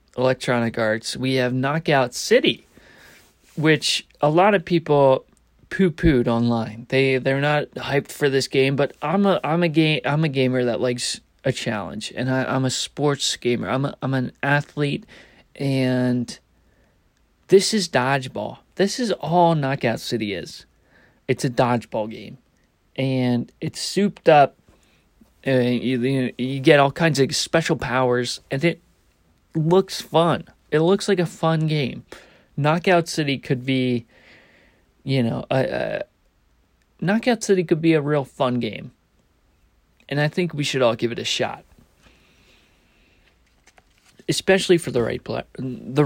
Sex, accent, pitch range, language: male, American, 125-160 Hz, English